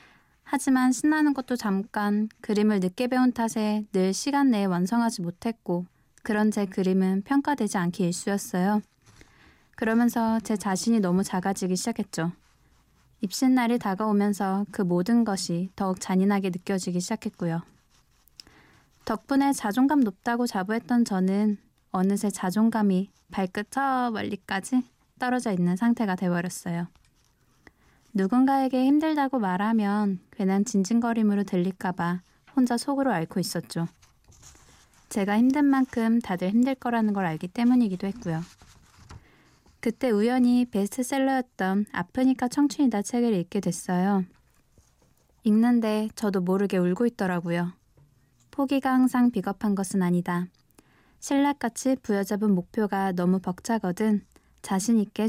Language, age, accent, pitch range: Korean, 20-39, native, 185-240 Hz